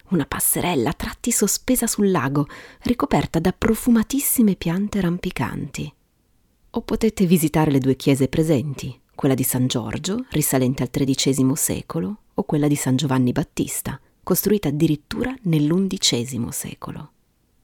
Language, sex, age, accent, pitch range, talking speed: Italian, female, 30-49, native, 135-200 Hz, 125 wpm